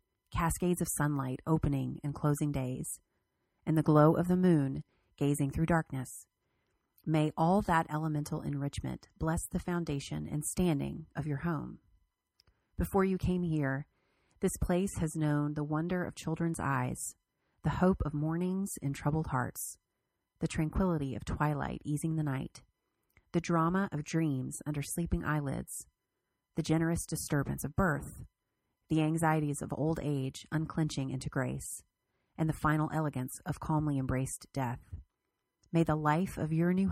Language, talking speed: English, 145 wpm